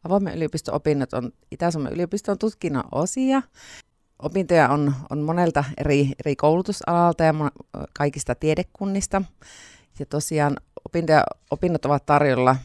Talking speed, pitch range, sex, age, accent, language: 115 wpm, 135-175 Hz, female, 30-49, native, Finnish